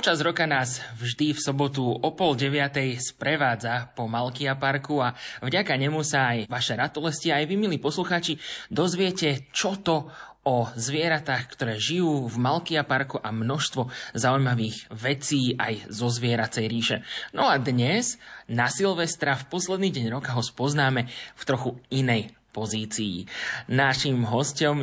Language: Slovak